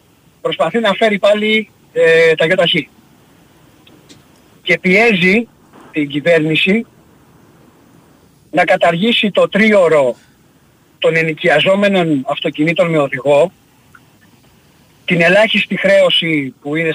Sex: male